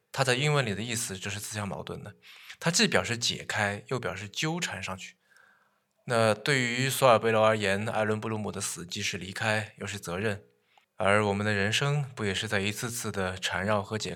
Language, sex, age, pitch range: Chinese, male, 20-39, 100-140 Hz